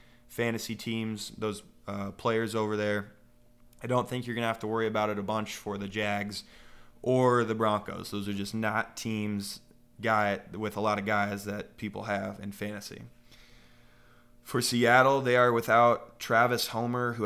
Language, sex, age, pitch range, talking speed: English, male, 20-39, 105-115 Hz, 170 wpm